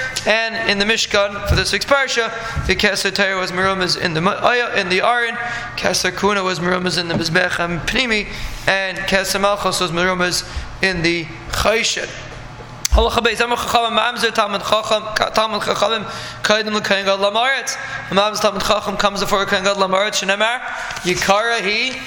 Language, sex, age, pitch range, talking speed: English, male, 20-39, 195-230 Hz, 90 wpm